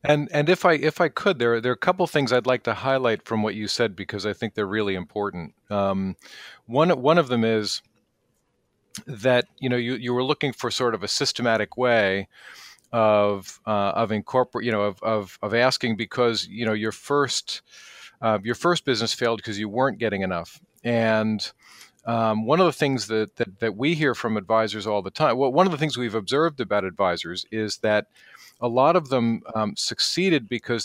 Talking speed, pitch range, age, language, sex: 205 wpm, 105-130 Hz, 40-59, English, male